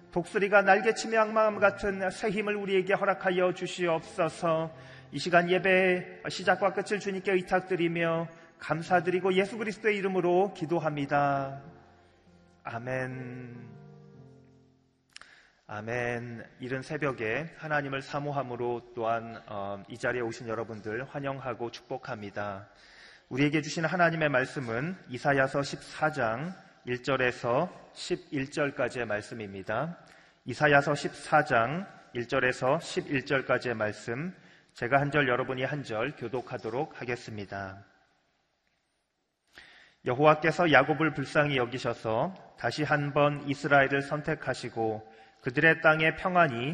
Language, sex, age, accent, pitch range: Korean, male, 30-49, native, 120-165 Hz